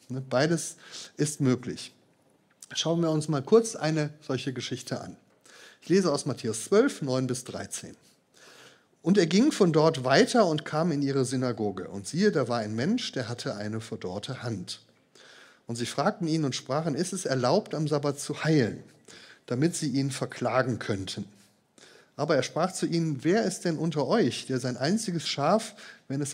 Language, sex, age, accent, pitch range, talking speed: German, male, 10-29, German, 115-160 Hz, 175 wpm